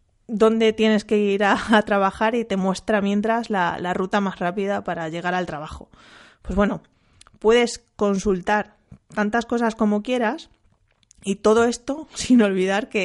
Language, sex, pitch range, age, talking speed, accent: Spanish, female, 180-210 Hz, 20-39, 155 wpm, Spanish